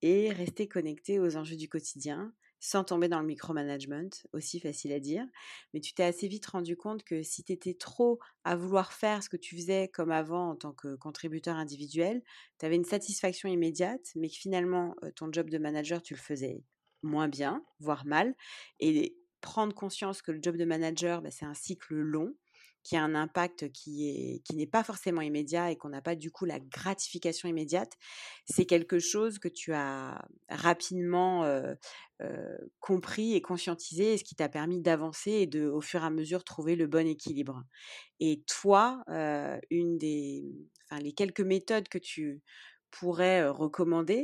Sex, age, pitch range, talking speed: female, 30-49, 155-195 Hz, 185 wpm